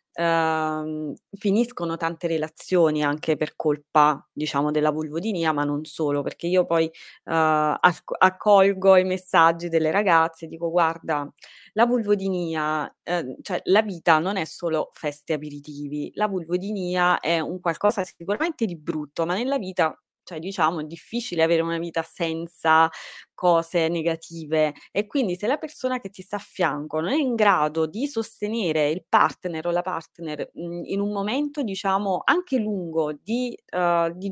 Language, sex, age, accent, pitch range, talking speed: Italian, female, 20-39, native, 160-200 Hz, 150 wpm